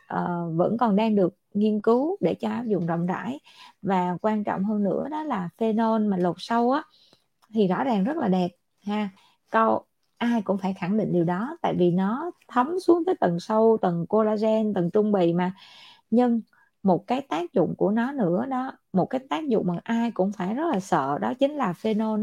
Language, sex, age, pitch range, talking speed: Vietnamese, female, 20-39, 185-245 Hz, 210 wpm